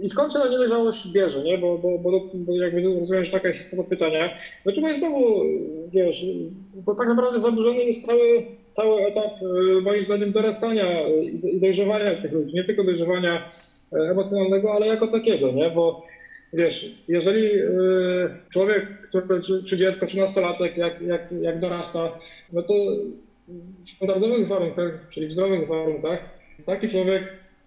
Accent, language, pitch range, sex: native, Polish, 170-210 Hz, male